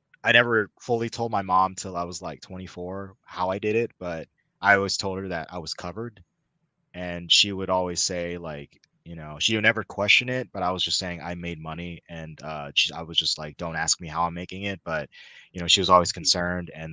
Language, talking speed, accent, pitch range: English, 235 wpm, American, 85-100 Hz